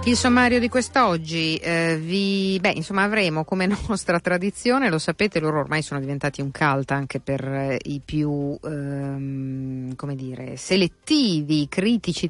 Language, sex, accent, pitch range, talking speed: Italian, female, native, 140-165 Hz, 145 wpm